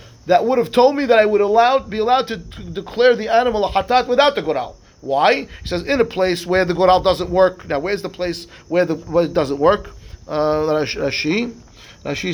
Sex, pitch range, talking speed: male, 150-215 Hz, 225 wpm